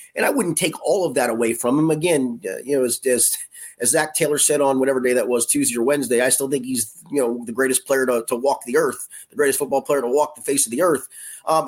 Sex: male